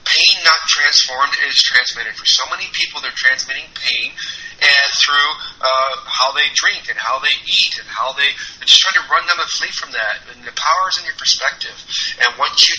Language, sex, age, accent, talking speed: English, male, 30-49, American, 205 wpm